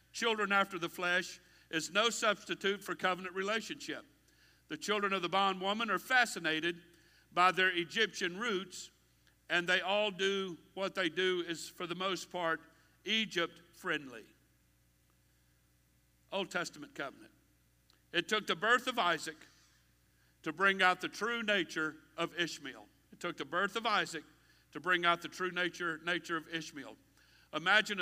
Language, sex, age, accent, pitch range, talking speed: English, male, 60-79, American, 150-210 Hz, 150 wpm